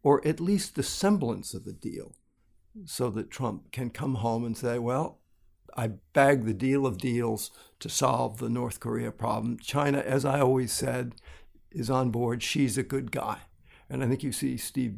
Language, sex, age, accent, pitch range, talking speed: English, male, 60-79, American, 115-135 Hz, 190 wpm